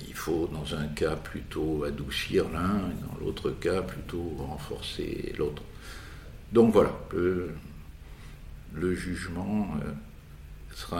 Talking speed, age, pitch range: 115 wpm, 60-79, 75-100 Hz